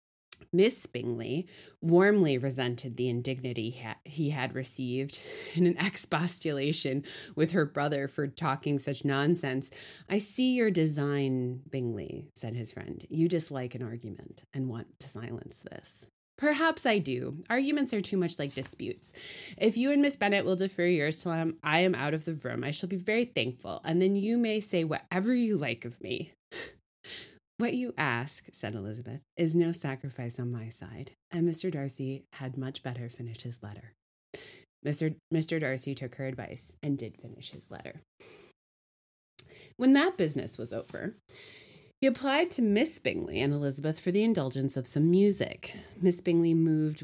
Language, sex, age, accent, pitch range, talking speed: English, female, 20-39, American, 130-180 Hz, 165 wpm